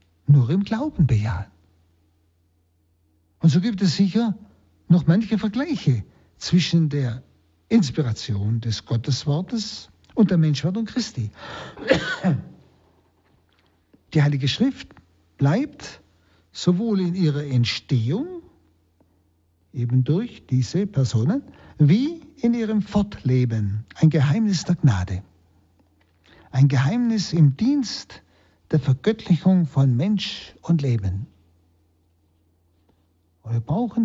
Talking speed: 95 wpm